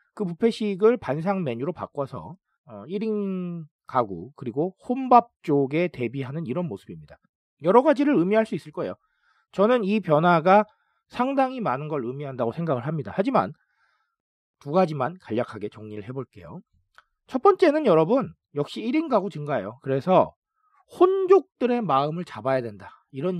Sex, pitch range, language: male, 135-225 Hz, Korean